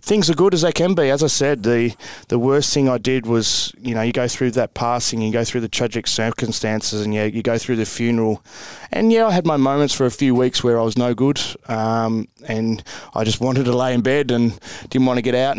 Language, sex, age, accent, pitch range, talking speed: English, male, 20-39, Australian, 115-130 Hz, 255 wpm